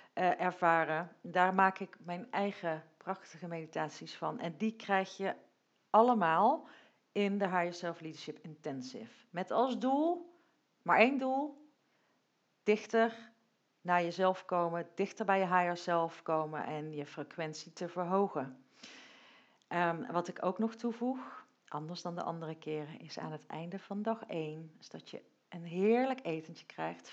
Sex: female